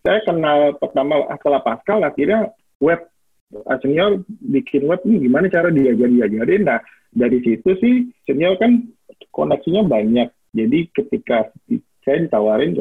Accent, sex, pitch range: native, male, 130-190 Hz